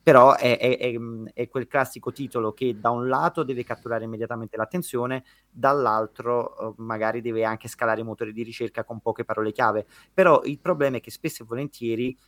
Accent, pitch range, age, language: native, 115-135 Hz, 30-49, Italian